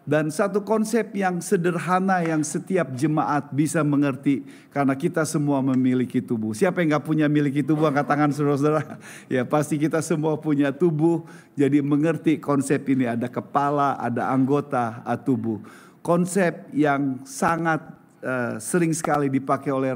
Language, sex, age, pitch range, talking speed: Indonesian, male, 50-69, 135-165 Hz, 140 wpm